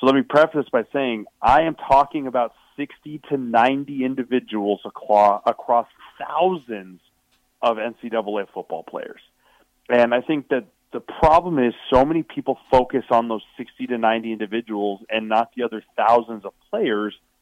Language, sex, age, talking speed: English, male, 30-49, 150 wpm